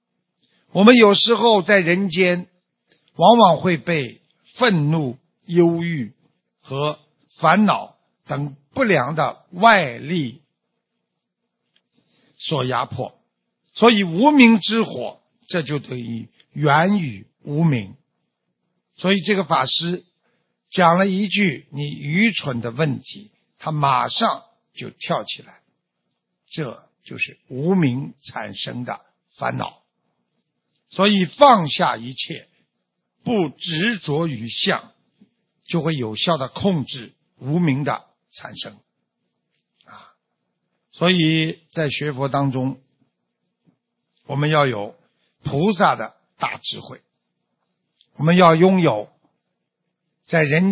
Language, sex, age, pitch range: Chinese, male, 60-79, 130-185 Hz